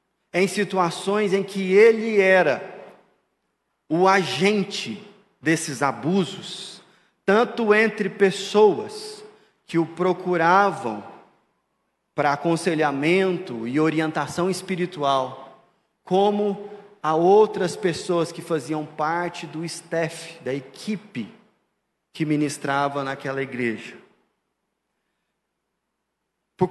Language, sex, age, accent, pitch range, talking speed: Portuguese, male, 40-59, Brazilian, 170-220 Hz, 85 wpm